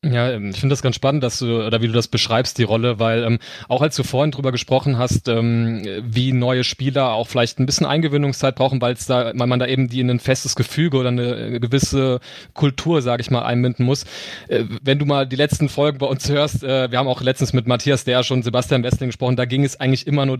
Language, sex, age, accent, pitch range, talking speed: German, male, 30-49, German, 120-135 Hz, 245 wpm